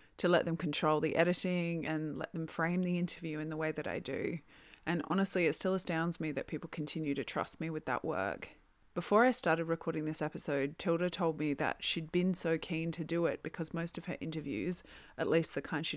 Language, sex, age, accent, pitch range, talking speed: English, female, 20-39, Australian, 155-175 Hz, 225 wpm